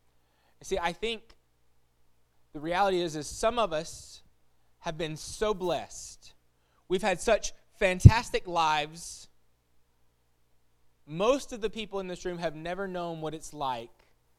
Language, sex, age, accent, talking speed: English, male, 20-39, American, 135 wpm